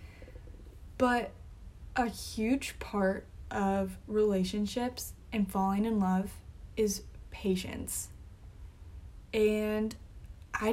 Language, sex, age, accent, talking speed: English, female, 10-29, American, 80 wpm